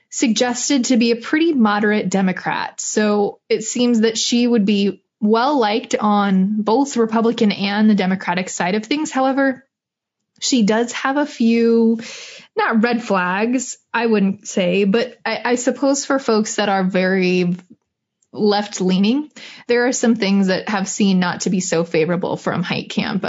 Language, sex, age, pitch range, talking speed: English, female, 20-39, 190-240 Hz, 160 wpm